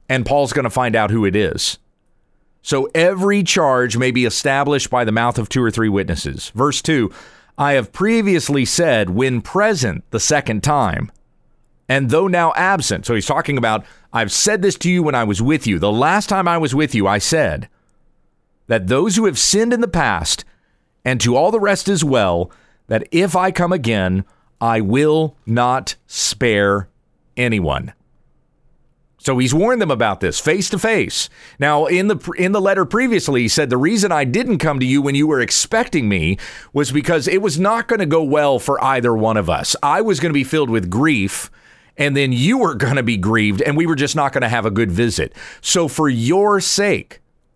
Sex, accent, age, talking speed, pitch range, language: male, American, 40-59, 205 wpm, 120-175 Hz, English